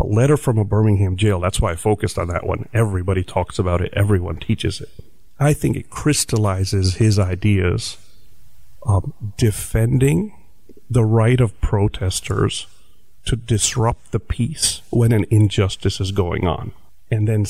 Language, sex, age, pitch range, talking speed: English, male, 50-69, 100-125 Hz, 150 wpm